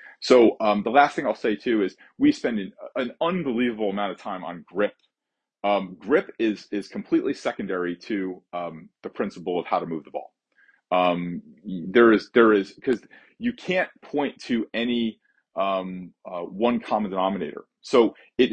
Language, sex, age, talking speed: English, male, 30-49, 170 wpm